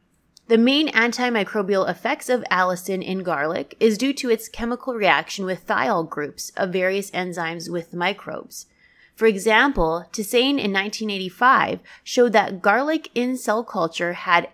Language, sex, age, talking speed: English, female, 20-39, 140 wpm